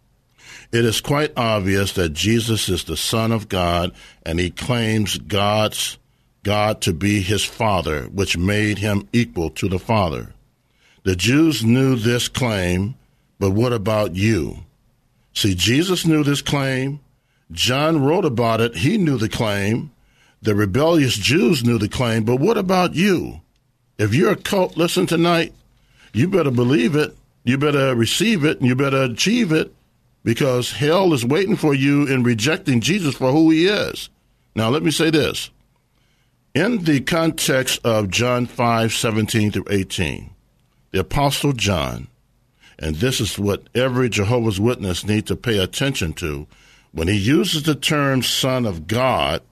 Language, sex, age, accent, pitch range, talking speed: English, male, 60-79, American, 105-140 Hz, 155 wpm